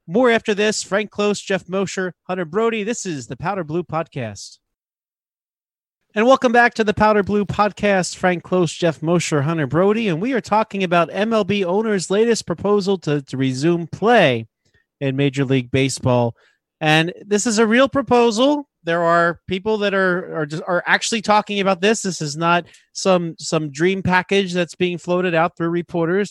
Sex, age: male, 30-49